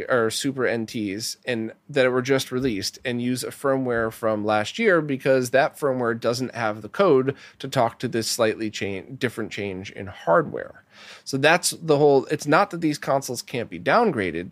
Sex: male